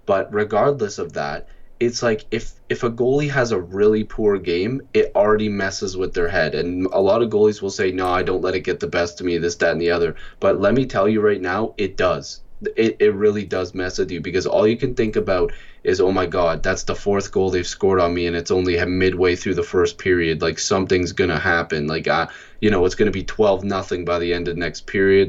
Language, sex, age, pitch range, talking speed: English, male, 20-39, 95-130 Hz, 250 wpm